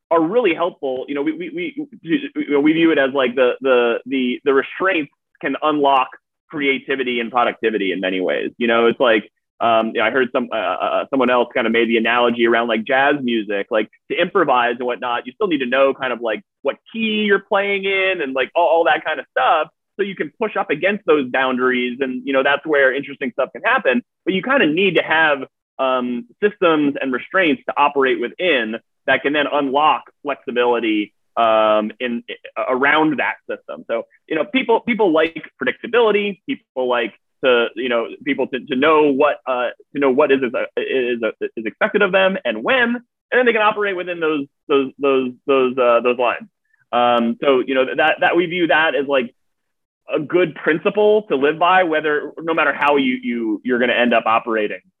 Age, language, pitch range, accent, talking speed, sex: 30-49, English, 125-190 Hz, American, 205 wpm, male